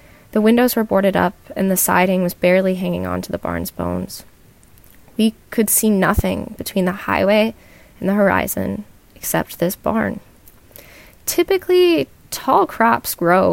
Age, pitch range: 20-39, 165-215 Hz